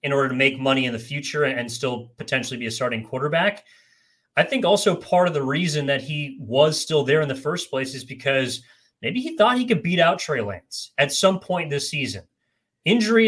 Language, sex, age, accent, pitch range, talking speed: English, male, 30-49, American, 140-200 Hz, 215 wpm